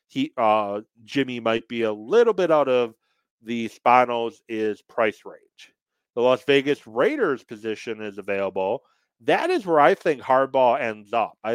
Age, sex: 40-59, male